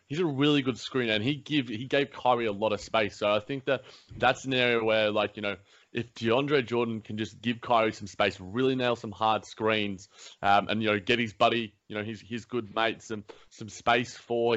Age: 20-39